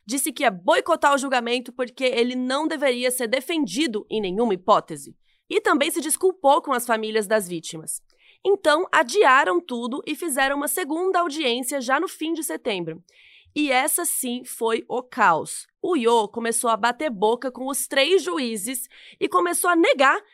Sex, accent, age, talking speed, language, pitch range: female, Brazilian, 20-39, 170 wpm, Portuguese, 235-305 Hz